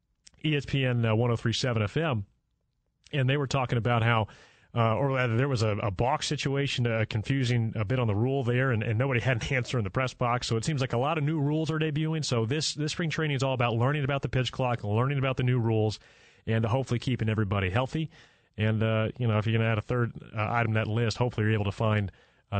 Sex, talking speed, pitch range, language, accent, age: male, 240 wpm, 110-135 Hz, English, American, 30-49